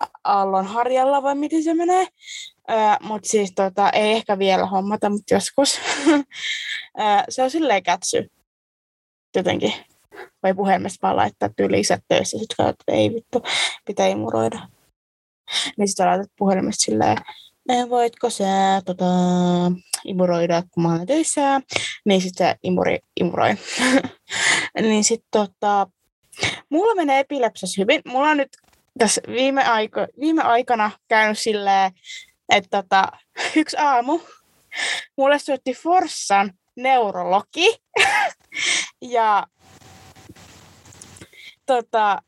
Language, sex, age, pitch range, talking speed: Finnish, female, 20-39, 190-275 Hz, 110 wpm